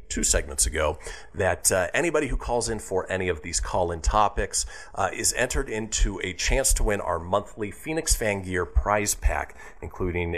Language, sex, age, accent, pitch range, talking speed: English, male, 40-59, American, 95-135 Hz, 180 wpm